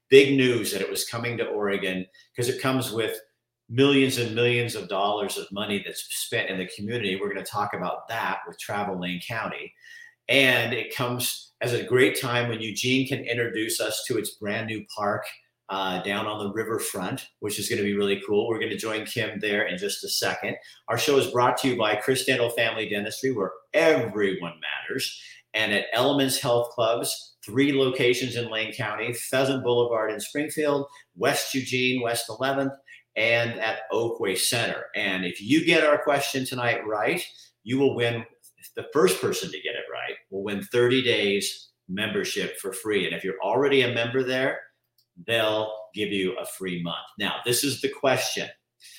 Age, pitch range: 50-69, 105-130 Hz